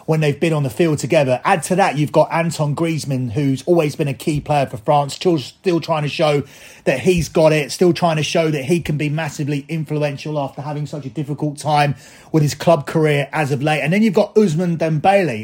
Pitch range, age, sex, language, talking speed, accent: 145-180 Hz, 30-49, male, English, 235 wpm, British